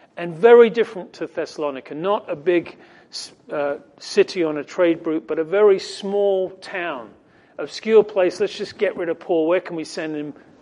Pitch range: 155-200 Hz